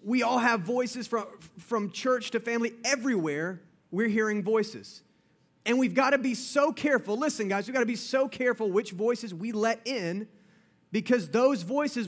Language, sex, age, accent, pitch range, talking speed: English, male, 30-49, American, 195-245 Hz, 180 wpm